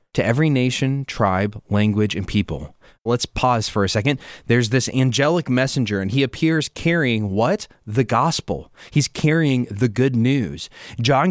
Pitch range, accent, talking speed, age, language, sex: 110-145 Hz, American, 155 wpm, 20-39, English, male